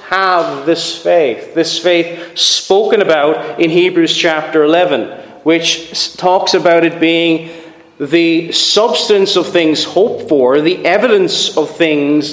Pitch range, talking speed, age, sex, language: 140-185 Hz, 125 wpm, 30-49, male, English